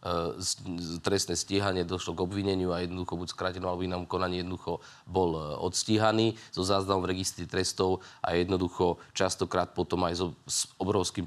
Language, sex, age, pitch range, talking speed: Slovak, male, 30-49, 90-110 Hz, 150 wpm